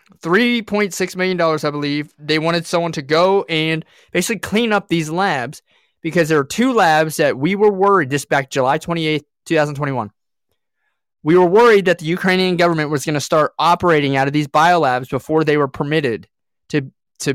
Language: English